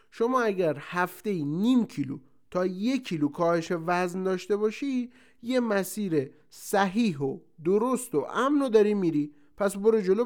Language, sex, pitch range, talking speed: Persian, male, 150-230 Hz, 140 wpm